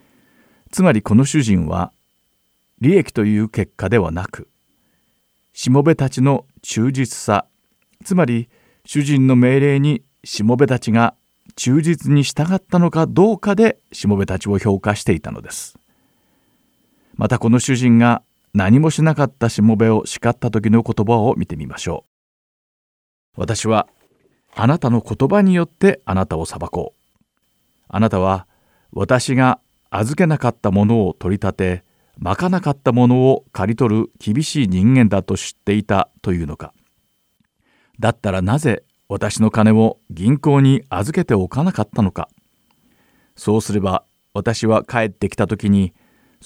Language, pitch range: Japanese, 100-140 Hz